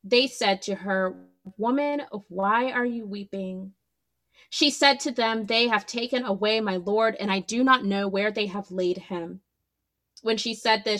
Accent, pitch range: American, 195-240 Hz